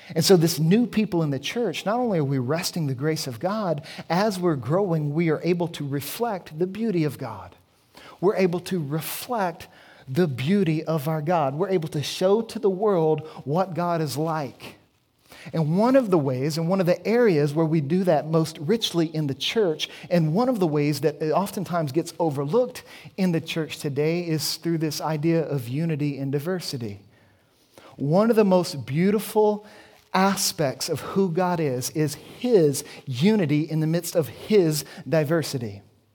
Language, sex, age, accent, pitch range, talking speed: English, male, 40-59, American, 145-180 Hz, 180 wpm